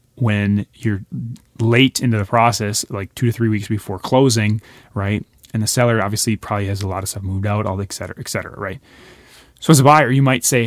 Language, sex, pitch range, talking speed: English, male, 110-135 Hz, 225 wpm